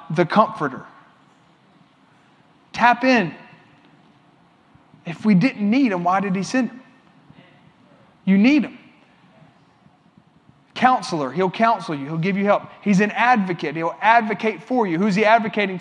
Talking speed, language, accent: 135 wpm, English, American